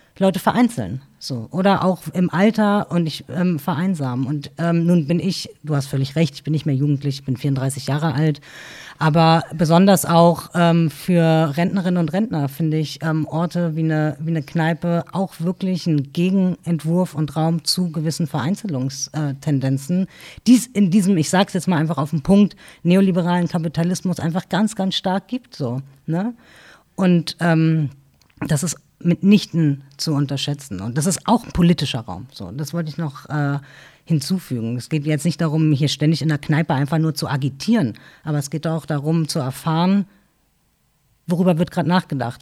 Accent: German